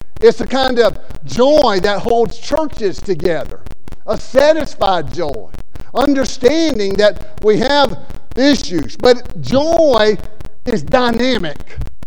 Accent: American